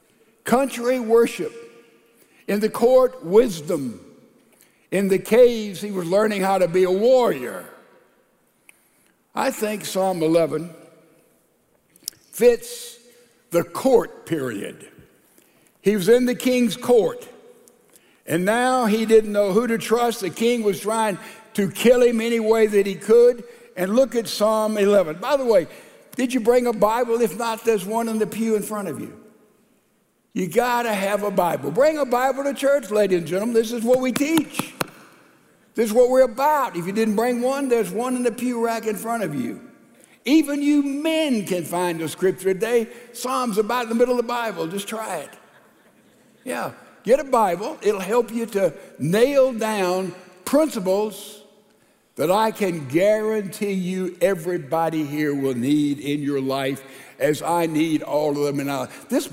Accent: American